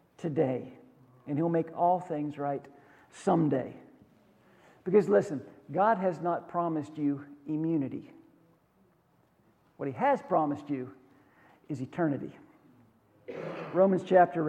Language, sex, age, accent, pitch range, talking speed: English, male, 50-69, American, 145-195 Hz, 105 wpm